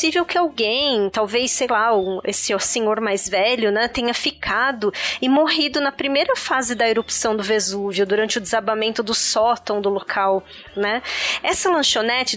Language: Portuguese